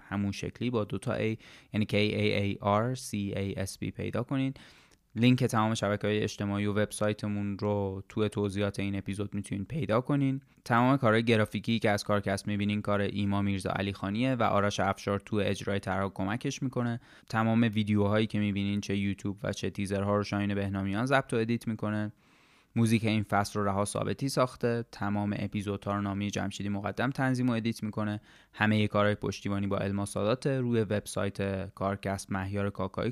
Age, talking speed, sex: 20-39, 165 wpm, male